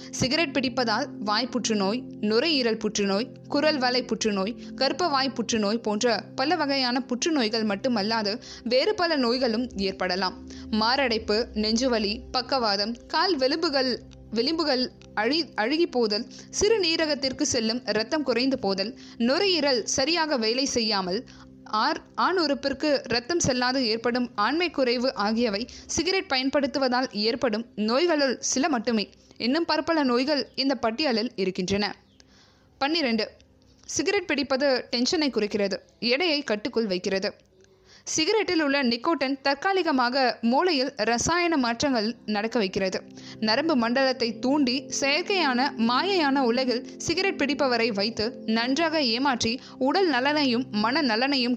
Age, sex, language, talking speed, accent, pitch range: 20-39, female, Tamil, 100 wpm, native, 225-285 Hz